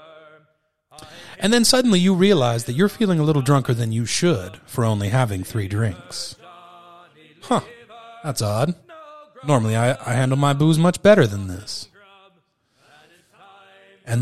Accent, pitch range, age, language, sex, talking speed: American, 120-175 Hz, 30-49, English, male, 140 wpm